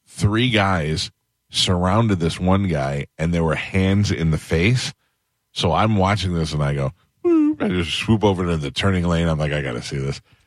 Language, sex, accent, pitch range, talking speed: English, male, American, 80-95 Hz, 195 wpm